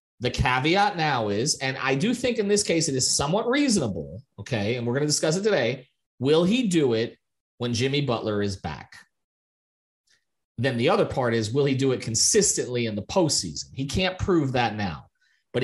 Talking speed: 195 wpm